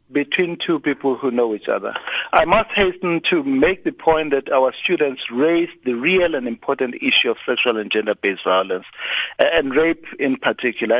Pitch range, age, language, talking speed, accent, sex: 135-200 Hz, 60-79, English, 175 wpm, South African, male